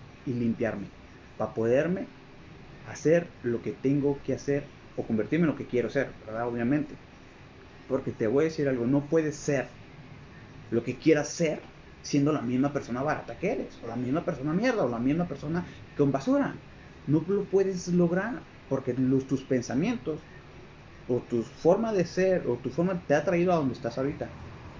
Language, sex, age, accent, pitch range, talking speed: Spanish, male, 30-49, Mexican, 115-145 Hz, 175 wpm